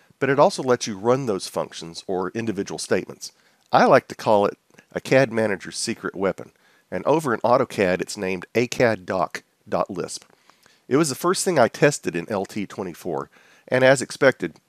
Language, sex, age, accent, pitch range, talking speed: English, male, 50-69, American, 100-135 Hz, 165 wpm